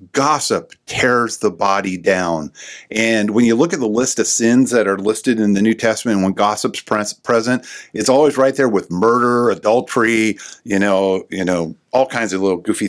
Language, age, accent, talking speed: English, 50-69, American, 190 wpm